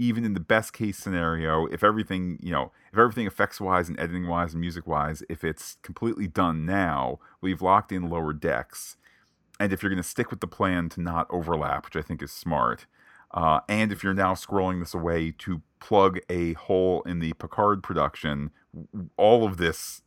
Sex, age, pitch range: male, 40-59, 80-100 Hz